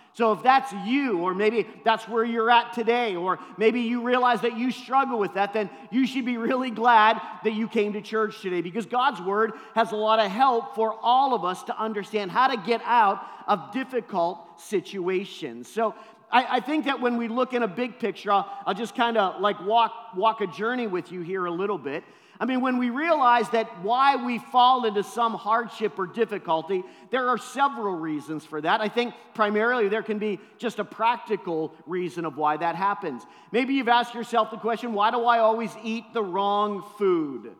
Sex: male